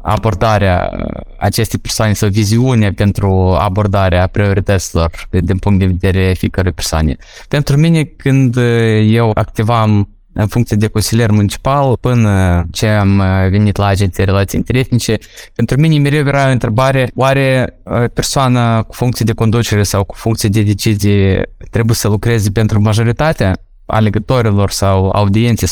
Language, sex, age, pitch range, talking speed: Romanian, male, 20-39, 100-120 Hz, 135 wpm